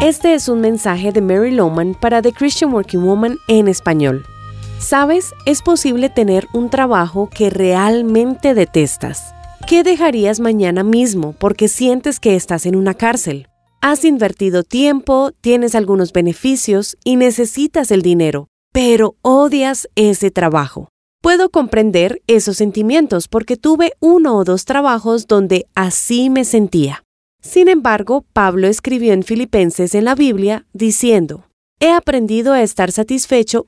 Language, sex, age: Spanish, female, 30-49